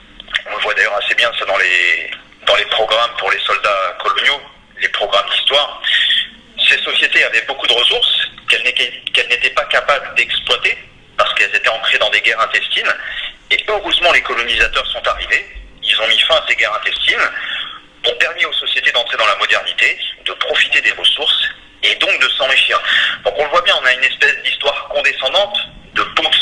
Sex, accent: male, French